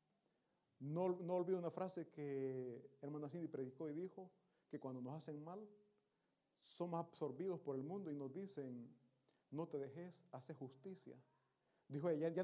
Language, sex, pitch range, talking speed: Italian, male, 145-195 Hz, 155 wpm